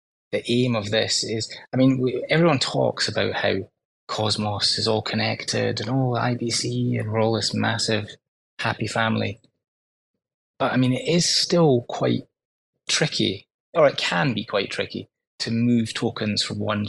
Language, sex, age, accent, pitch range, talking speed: English, male, 20-39, British, 100-115 Hz, 155 wpm